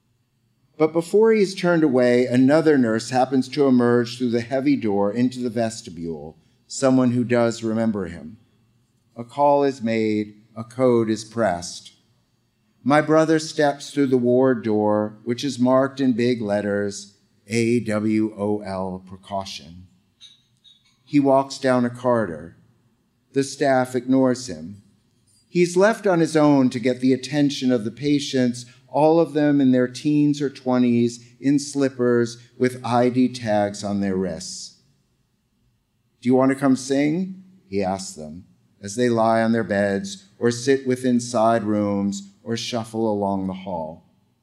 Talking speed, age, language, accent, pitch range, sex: 145 wpm, 50-69, English, American, 110-135 Hz, male